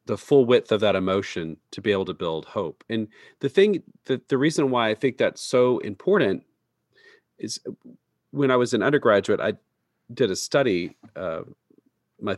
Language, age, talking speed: English, 40-59, 175 wpm